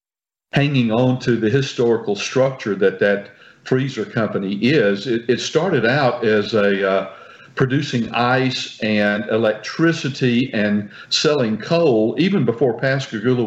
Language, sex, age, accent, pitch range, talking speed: English, male, 50-69, American, 100-125 Hz, 125 wpm